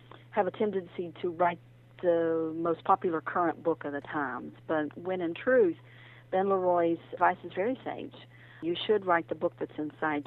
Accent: American